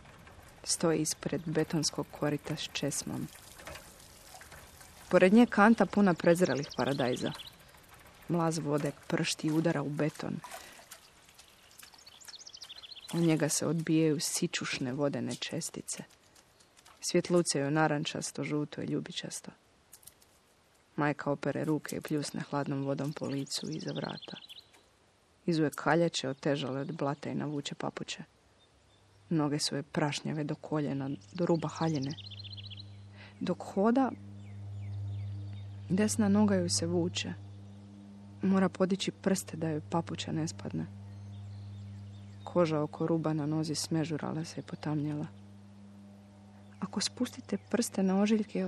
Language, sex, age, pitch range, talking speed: Croatian, female, 30-49, 100-170 Hz, 110 wpm